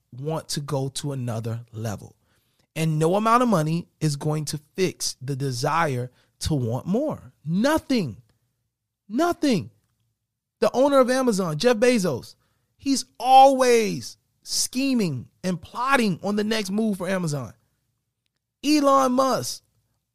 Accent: American